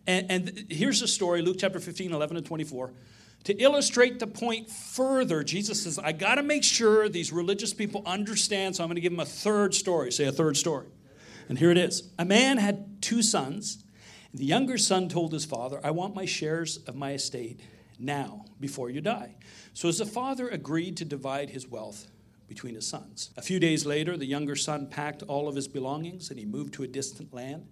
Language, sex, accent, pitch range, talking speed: English, male, American, 140-190 Hz, 210 wpm